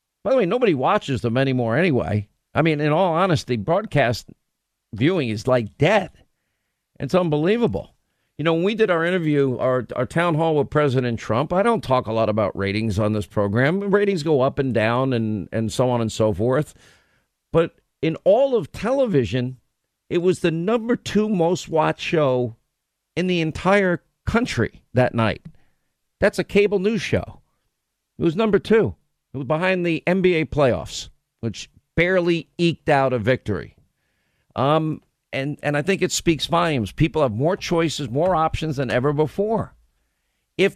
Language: English